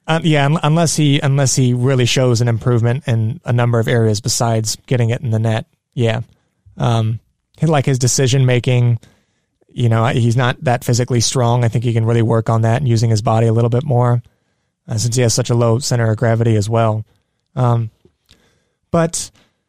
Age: 30-49